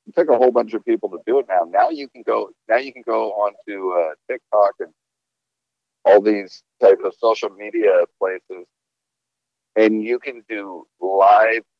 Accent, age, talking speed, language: American, 50-69, 185 wpm, English